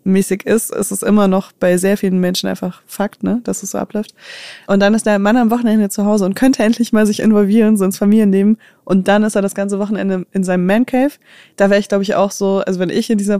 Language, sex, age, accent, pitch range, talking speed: German, female, 20-39, German, 190-215 Hz, 260 wpm